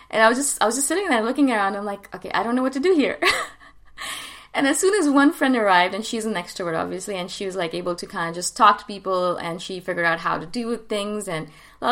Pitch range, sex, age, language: 180-235 Hz, female, 20-39, English